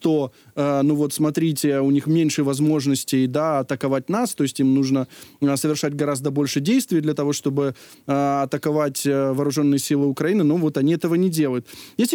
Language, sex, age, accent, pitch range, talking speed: Ukrainian, male, 20-39, native, 150-190 Hz, 190 wpm